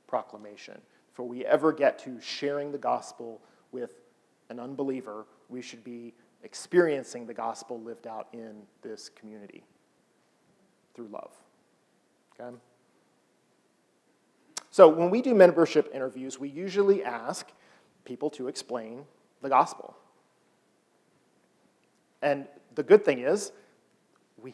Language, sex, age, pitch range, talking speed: English, male, 40-59, 120-150 Hz, 110 wpm